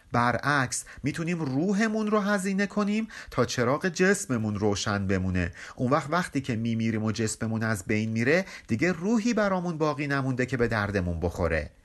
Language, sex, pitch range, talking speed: Persian, male, 110-155 Hz, 150 wpm